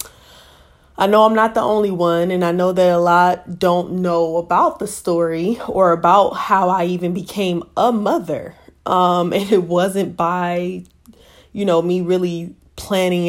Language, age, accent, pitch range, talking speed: English, 20-39, American, 165-180 Hz, 165 wpm